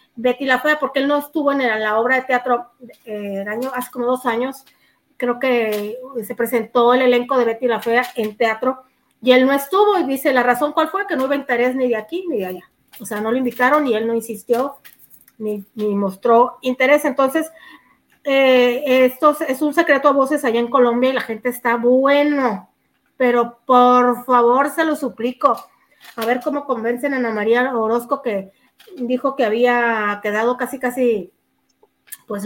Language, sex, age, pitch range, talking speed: Spanish, female, 30-49, 230-275 Hz, 185 wpm